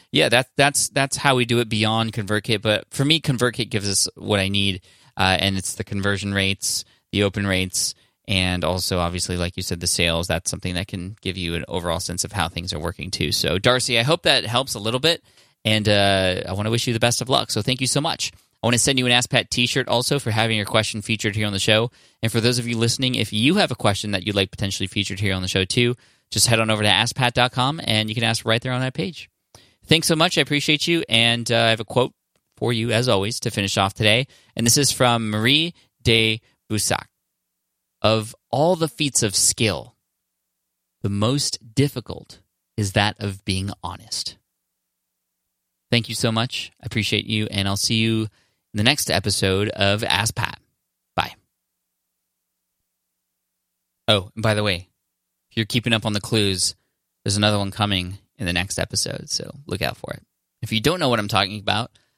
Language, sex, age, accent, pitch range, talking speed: English, male, 20-39, American, 95-120 Hz, 215 wpm